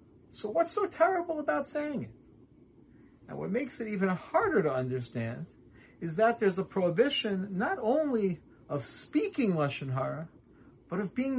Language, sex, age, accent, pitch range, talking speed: English, male, 40-59, American, 155-250 Hz, 155 wpm